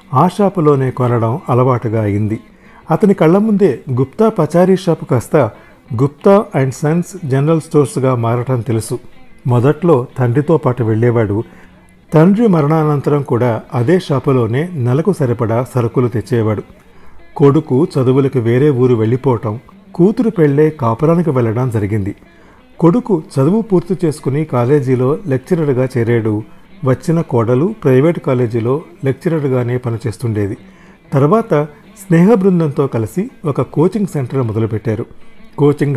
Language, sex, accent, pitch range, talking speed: Telugu, male, native, 120-165 Hz, 105 wpm